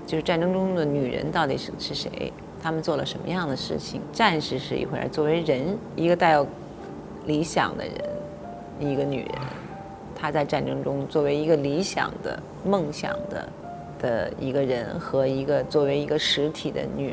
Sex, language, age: female, Chinese, 30-49